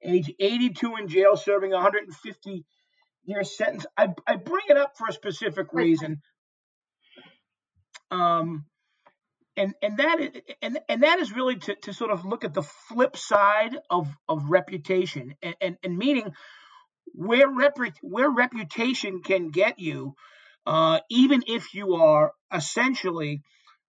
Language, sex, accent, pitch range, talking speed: English, male, American, 160-230 Hz, 140 wpm